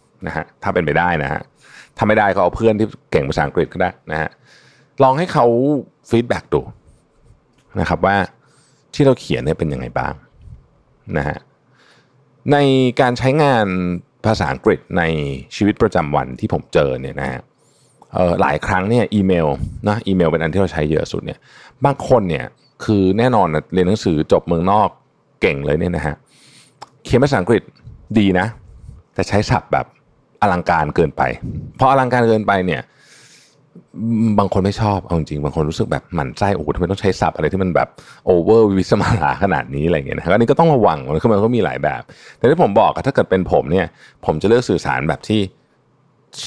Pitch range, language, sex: 85-125 Hz, Thai, male